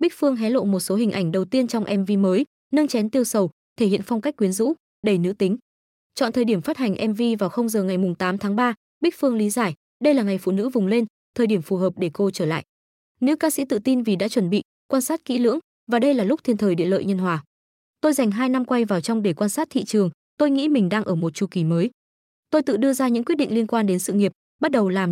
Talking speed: 280 wpm